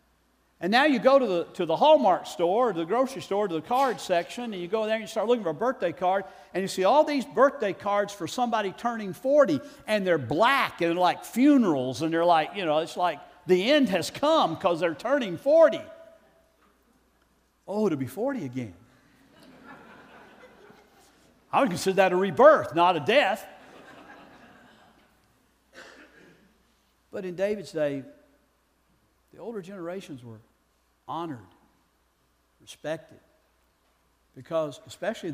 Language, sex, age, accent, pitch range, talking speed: English, male, 50-69, American, 130-210 Hz, 150 wpm